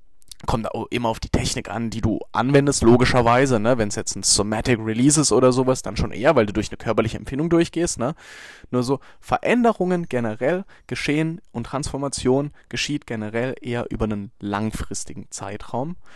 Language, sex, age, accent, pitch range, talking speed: English, male, 20-39, German, 105-125 Hz, 165 wpm